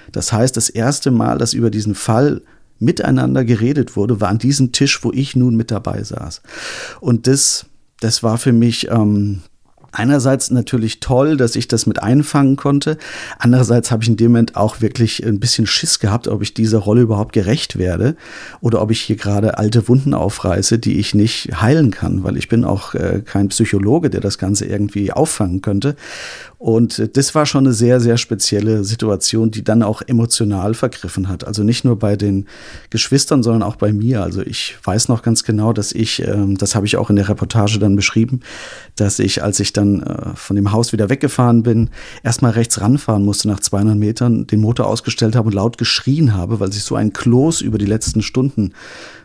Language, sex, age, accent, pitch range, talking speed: German, male, 50-69, German, 105-125 Hz, 195 wpm